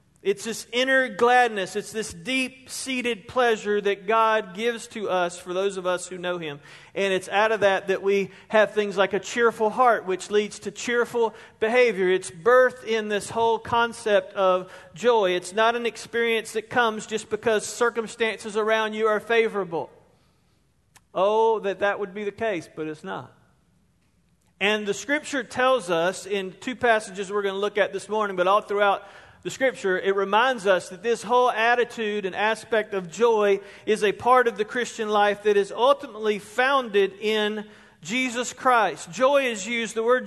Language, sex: English, male